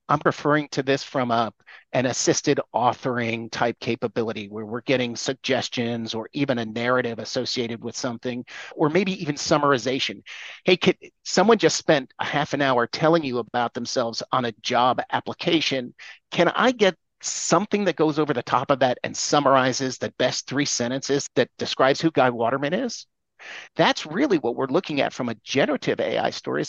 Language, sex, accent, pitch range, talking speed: English, male, American, 125-155 Hz, 170 wpm